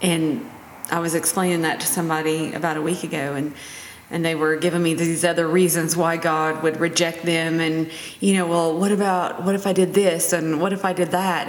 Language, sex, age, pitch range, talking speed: English, female, 30-49, 170-205 Hz, 220 wpm